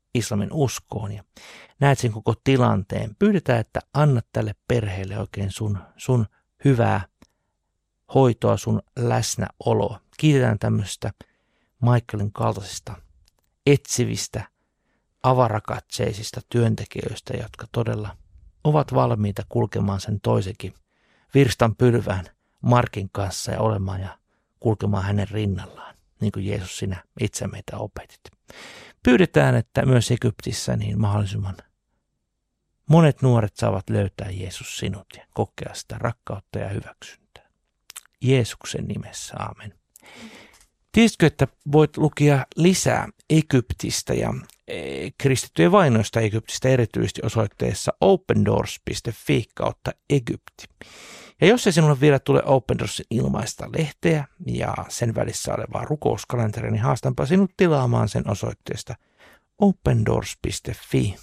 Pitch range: 105-135 Hz